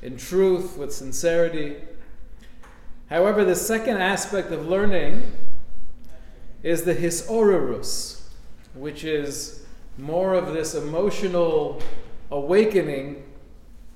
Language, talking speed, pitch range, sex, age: English, 85 wpm, 155-195 Hz, male, 40-59